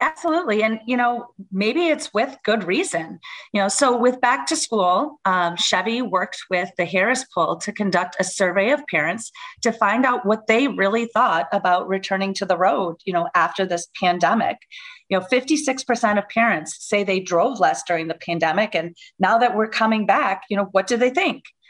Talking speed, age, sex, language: 195 wpm, 30-49, female, English